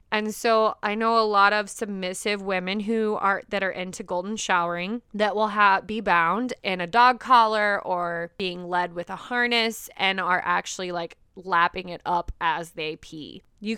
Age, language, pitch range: 20-39, English, 190-225 Hz